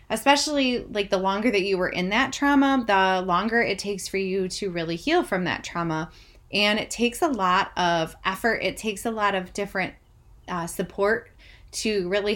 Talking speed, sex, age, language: 190 wpm, female, 20-39, English